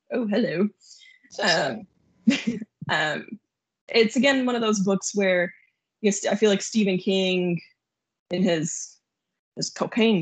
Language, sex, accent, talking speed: English, female, American, 115 wpm